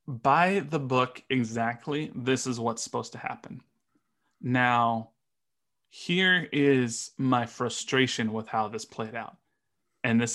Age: 20-39